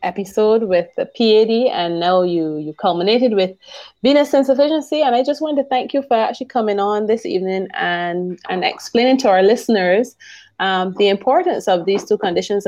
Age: 20-39